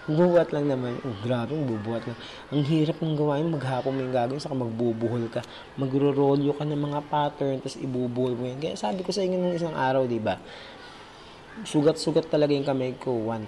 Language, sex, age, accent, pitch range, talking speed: Filipino, male, 20-39, native, 120-150 Hz, 185 wpm